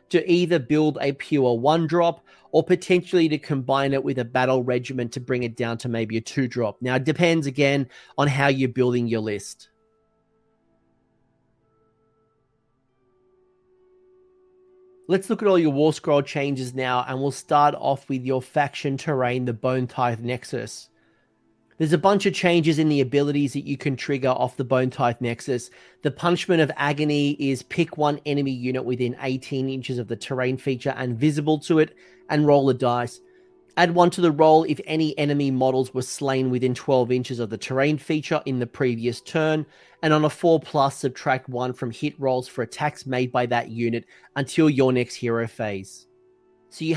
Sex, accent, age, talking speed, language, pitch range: male, Australian, 30-49, 180 wpm, English, 125-155 Hz